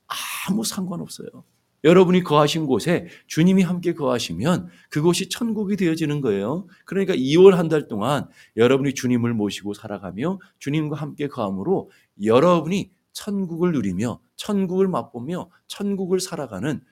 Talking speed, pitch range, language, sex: 105 wpm, 120-180 Hz, English, male